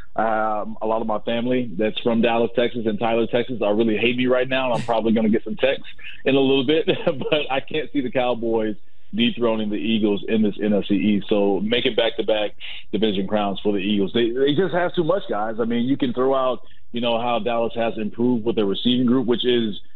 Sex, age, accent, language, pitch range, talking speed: male, 30-49, American, English, 105-130 Hz, 235 wpm